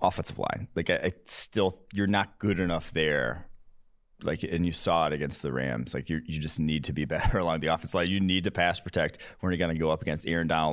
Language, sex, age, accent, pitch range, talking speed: English, male, 30-49, American, 75-95 Hz, 245 wpm